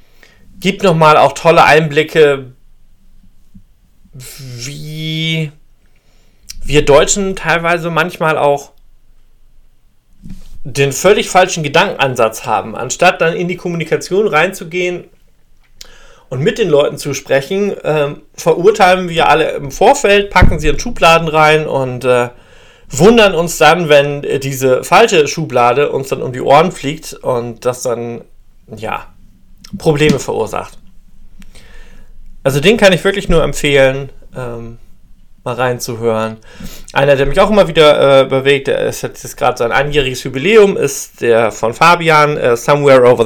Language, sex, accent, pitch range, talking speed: German, male, German, 125-170 Hz, 130 wpm